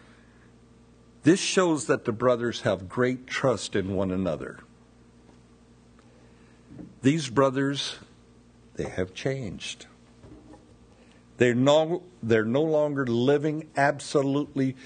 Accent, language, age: American, English, 60-79